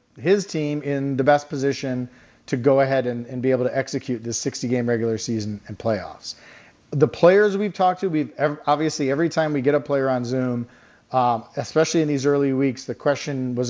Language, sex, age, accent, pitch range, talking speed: English, male, 40-59, American, 125-155 Hz, 200 wpm